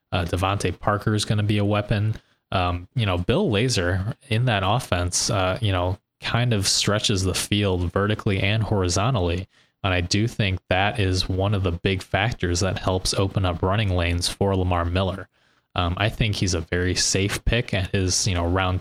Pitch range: 90-105 Hz